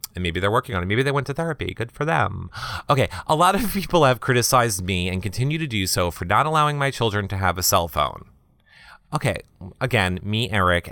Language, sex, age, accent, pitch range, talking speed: English, male, 30-49, American, 85-135 Hz, 225 wpm